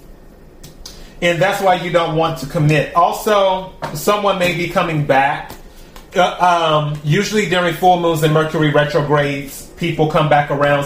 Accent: American